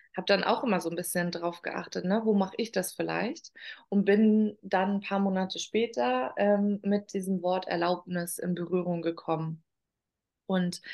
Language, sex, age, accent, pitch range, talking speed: German, female, 20-39, German, 175-210 Hz, 165 wpm